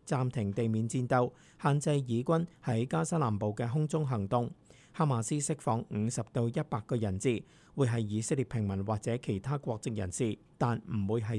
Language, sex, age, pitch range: Chinese, male, 50-69, 115-150 Hz